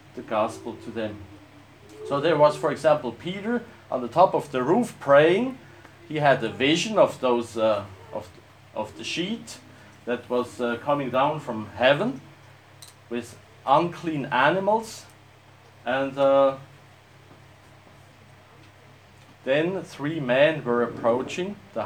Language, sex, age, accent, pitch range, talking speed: English, male, 40-59, Norwegian, 110-155 Hz, 125 wpm